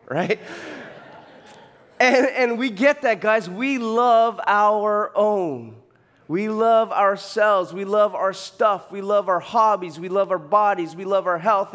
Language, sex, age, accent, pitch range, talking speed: English, male, 20-39, American, 160-210 Hz, 155 wpm